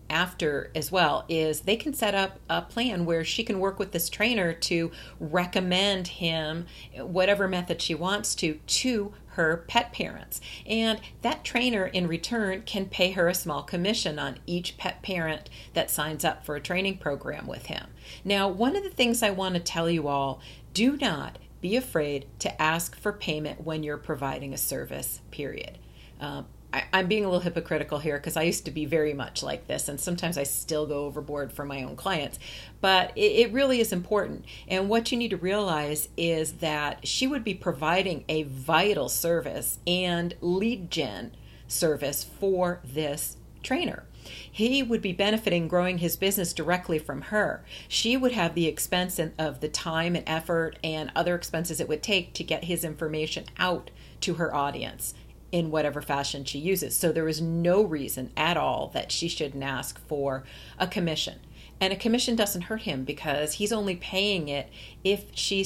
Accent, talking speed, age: American, 180 wpm, 40-59